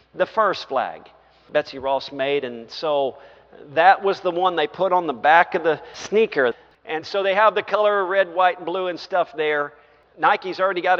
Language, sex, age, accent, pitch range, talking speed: English, male, 50-69, American, 135-180 Hz, 200 wpm